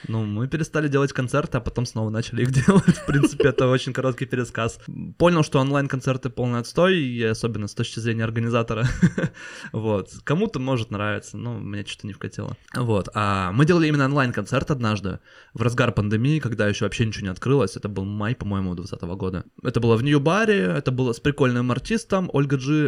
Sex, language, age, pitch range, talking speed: male, Russian, 20-39, 110-135 Hz, 185 wpm